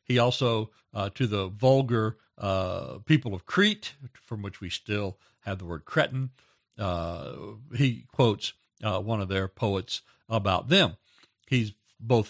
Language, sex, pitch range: English, male, 110-145 Hz